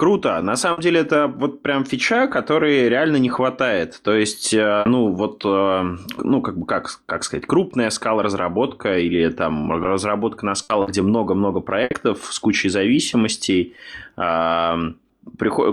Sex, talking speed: male, 140 wpm